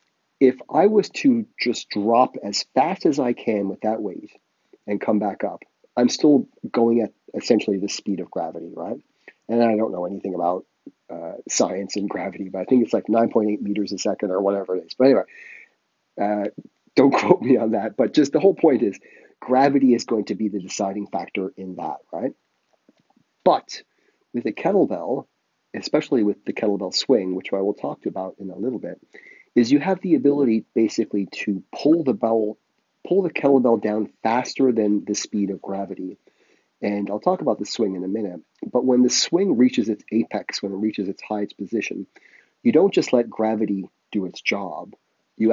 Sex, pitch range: male, 100-120 Hz